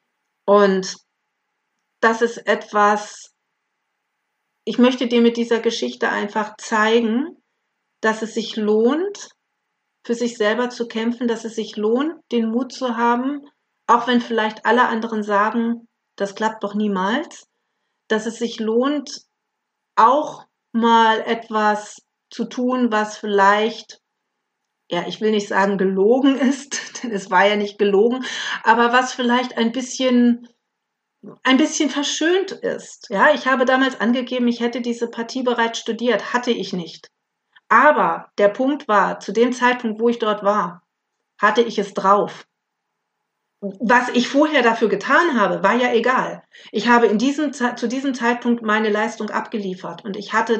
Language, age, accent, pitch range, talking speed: German, 50-69, German, 215-255 Hz, 145 wpm